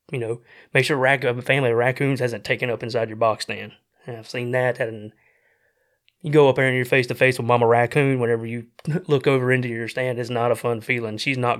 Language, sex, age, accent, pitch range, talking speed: English, male, 20-39, American, 120-135 Hz, 235 wpm